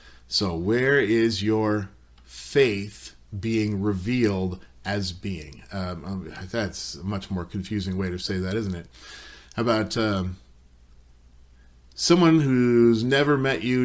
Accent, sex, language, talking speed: American, male, English, 120 wpm